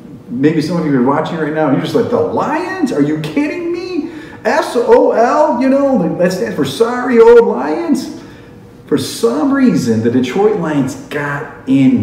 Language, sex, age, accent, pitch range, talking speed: English, male, 40-59, American, 175-245 Hz, 175 wpm